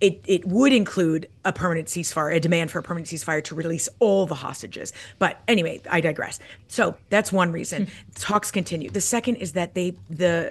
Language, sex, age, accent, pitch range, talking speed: English, female, 30-49, American, 165-210 Hz, 195 wpm